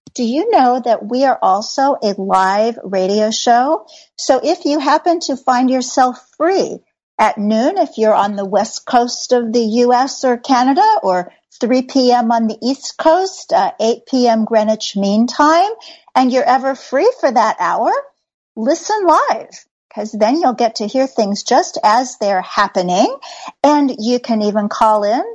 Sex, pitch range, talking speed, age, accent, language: female, 215-295 Hz, 170 wpm, 50-69, American, English